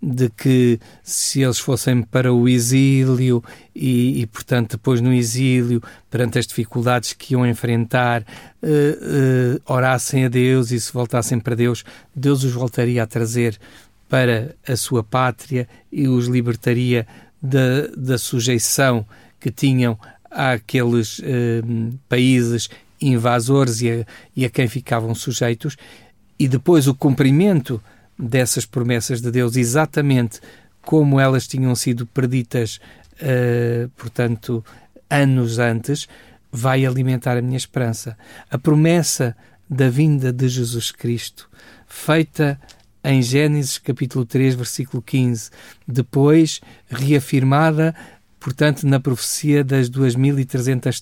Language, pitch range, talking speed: Portuguese, 120-135 Hz, 115 wpm